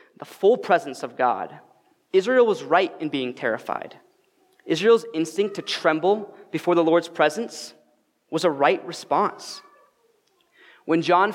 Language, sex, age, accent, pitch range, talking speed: English, male, 20-39, American, 150-190 Hz, 130 wpm